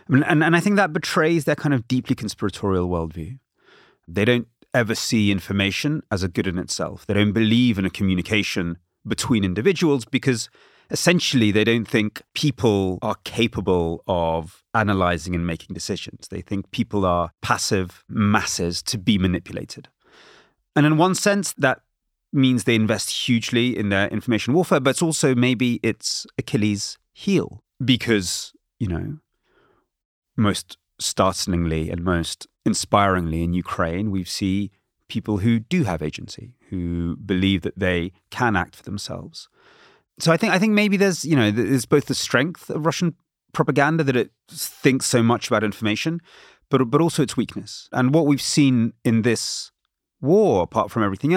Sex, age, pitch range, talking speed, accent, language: male, 30-49, 95-135 Hz, 160 wpm, British, Ukrainian